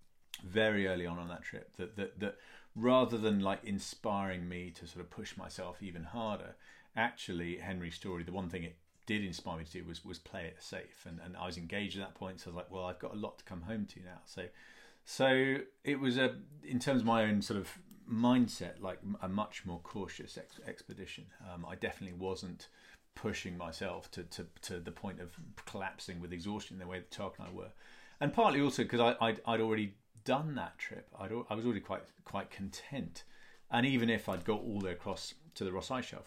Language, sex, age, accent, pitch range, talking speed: English, male, 40-59, British, 90-120 Hz, 220 wpm